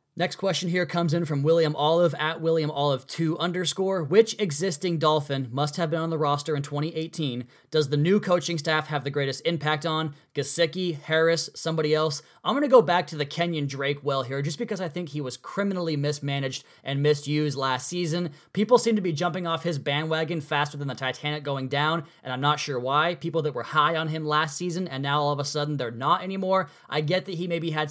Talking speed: 220 wpm